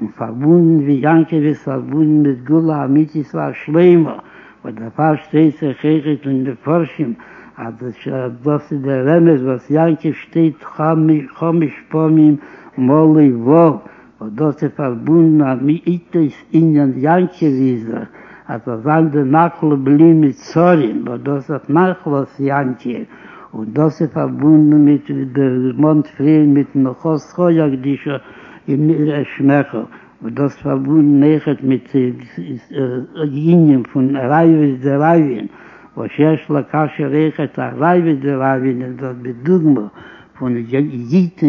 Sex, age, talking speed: male, 60-79, 105 wpm